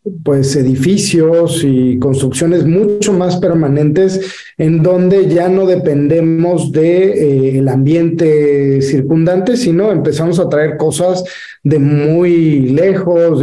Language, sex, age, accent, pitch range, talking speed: Spanish, male, 40-59, Mexican, 145-180 Hz, 105 wpm